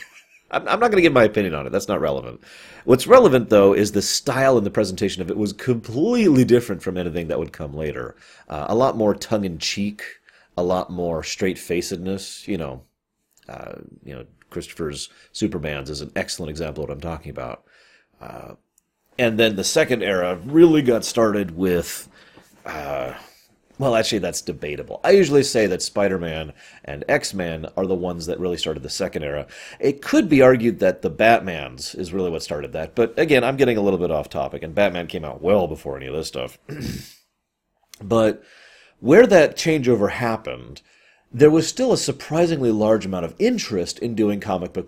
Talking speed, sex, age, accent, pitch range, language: 180 wpm, male, 30-49, American, 85-120 Hz, English